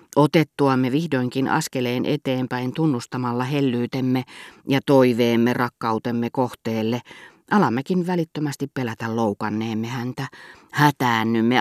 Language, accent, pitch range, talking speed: Finnish, native, 115-145 Hz, 85 wpm